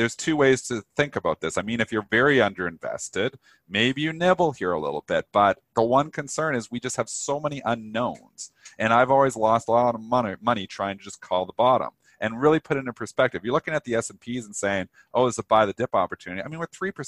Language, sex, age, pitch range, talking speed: English, male, 40-59, 105-140 Hz, 245 wpm